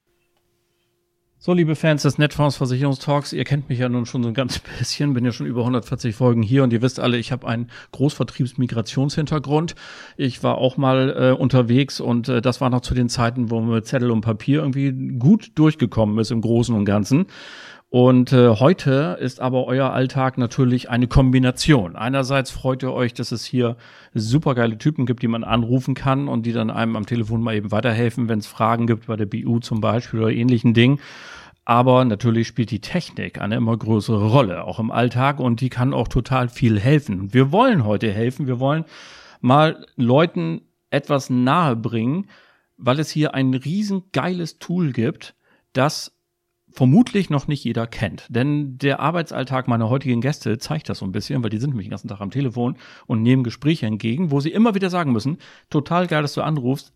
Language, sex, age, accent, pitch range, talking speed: German, male, 40-59, German, 115-145 Hz, 190 wpm